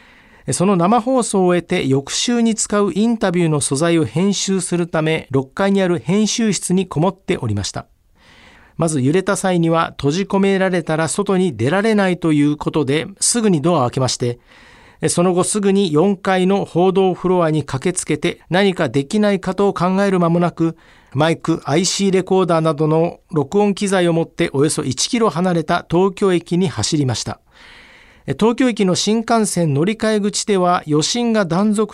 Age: 40-59